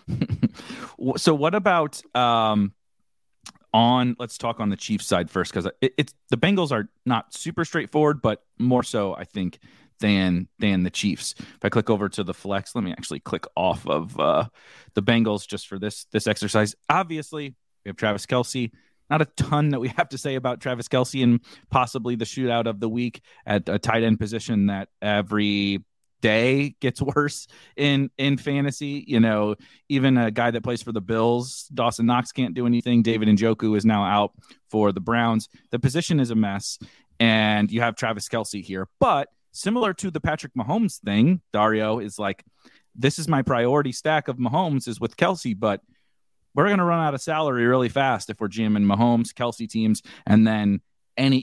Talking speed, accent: 185 wpm, American